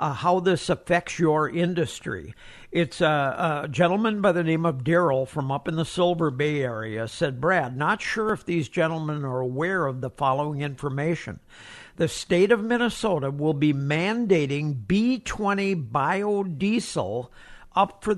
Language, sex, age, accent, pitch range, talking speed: English, male, 60-79, American, 150-185 Hz, 150 wpm